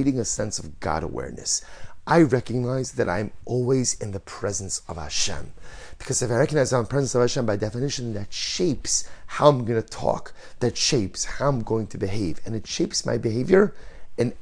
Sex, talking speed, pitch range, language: male, 190 wpm, 100-130 Hz, English